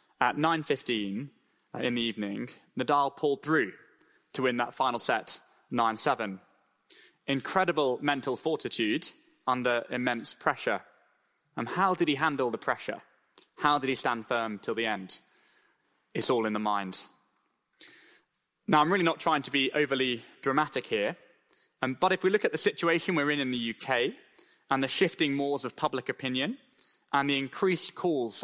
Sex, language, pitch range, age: male, English, 125-160 Hz, 20-39